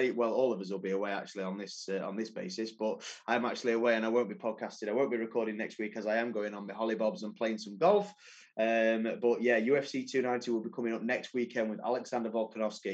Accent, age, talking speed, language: British, 20-39, 250 wpm, English